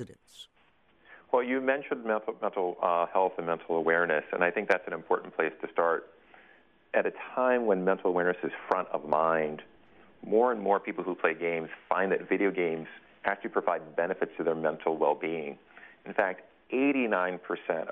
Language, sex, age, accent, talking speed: English, male, 40-59, American, 165 wpm